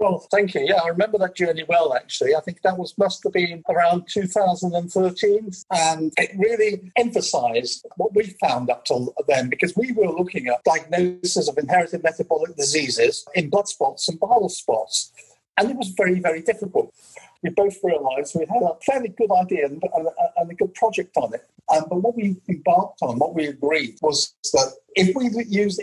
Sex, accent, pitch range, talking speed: male, British, 160-220 Hz, 190 wpm